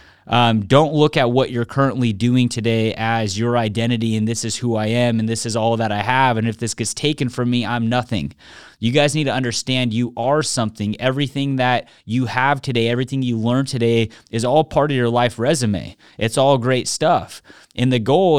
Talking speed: 210 wpm